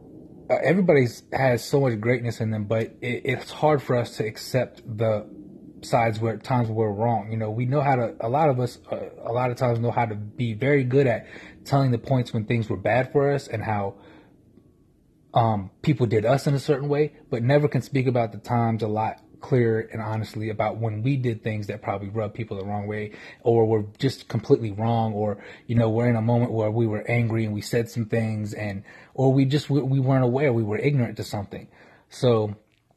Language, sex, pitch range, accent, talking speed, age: English, male, 110-130 Hz, American, 220 wpm, 30-49